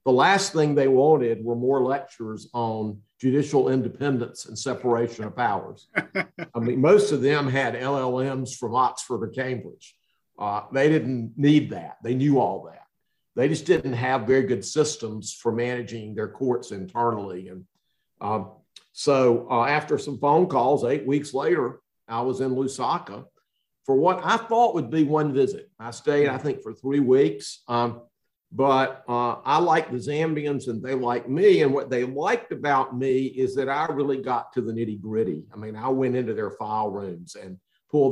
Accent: American